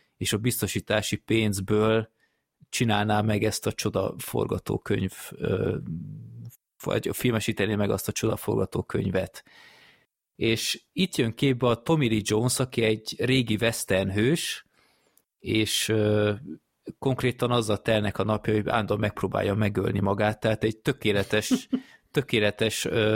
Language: Hungarian